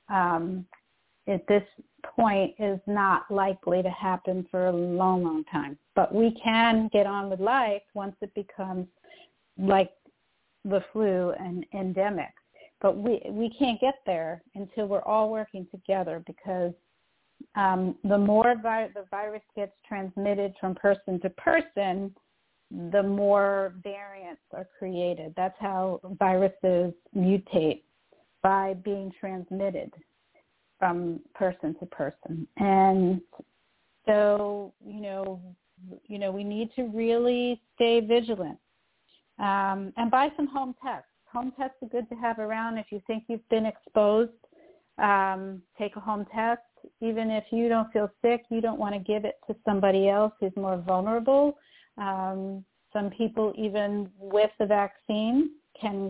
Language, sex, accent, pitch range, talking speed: English, female, American, 190-225 Hz, 140 wpm